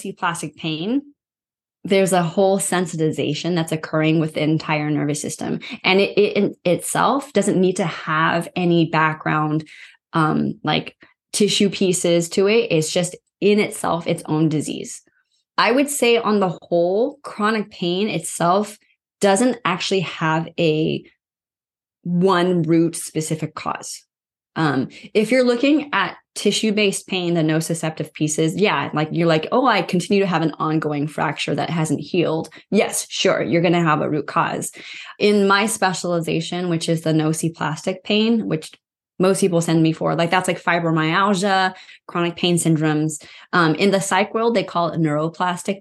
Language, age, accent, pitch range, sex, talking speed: English, 20-39, American, 160-200 Hz, female, 155 wpm